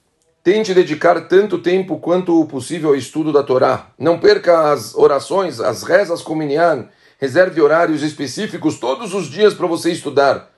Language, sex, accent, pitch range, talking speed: Portuguese, male, Brazilian, 135-180 Hz, 145 wpm